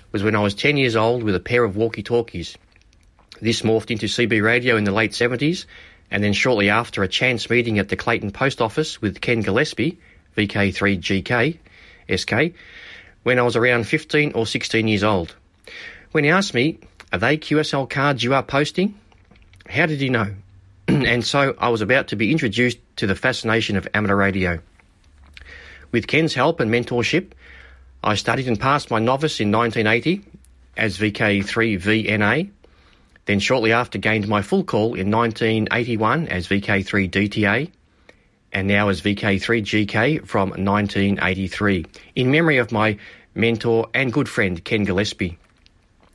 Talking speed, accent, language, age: 155 wpm, Australian, English, 40-59